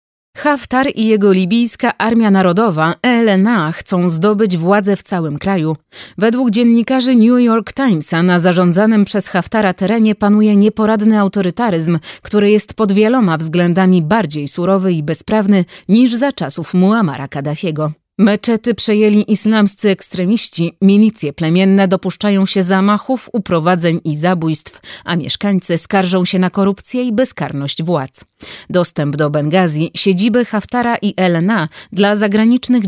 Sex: female